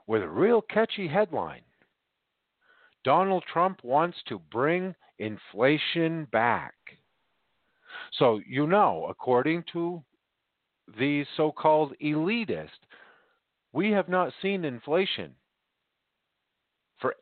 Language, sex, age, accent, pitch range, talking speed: English, male, 50-69, American, 125-185 Hz, 90 wpm